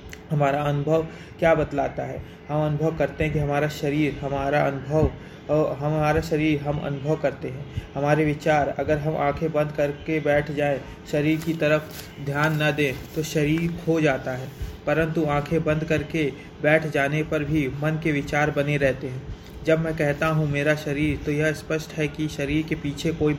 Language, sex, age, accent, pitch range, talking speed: Hindi, male, 30-49, native, 145-155 Hz, 180 wpm